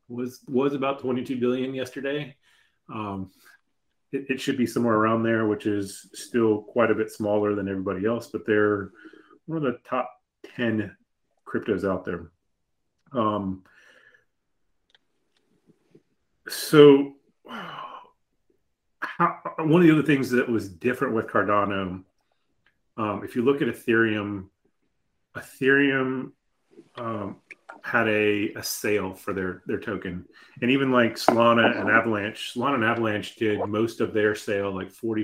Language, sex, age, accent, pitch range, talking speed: English, male, 30-49, American, 105-125 Hz, 135 wpm